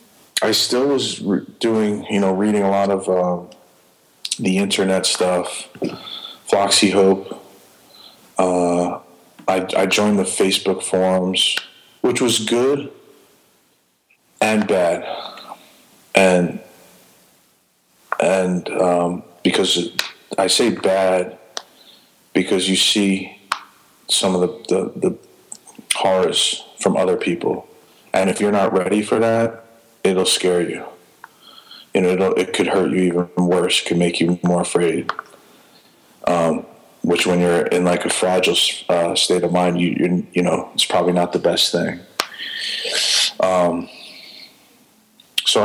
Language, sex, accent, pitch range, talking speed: English, male, American, 90-100 Hz, 120 wpm